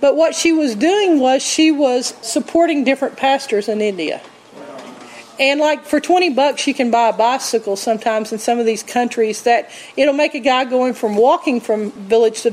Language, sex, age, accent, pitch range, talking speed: English, female, 40-59, American, 235-320 Hz, 190 wpm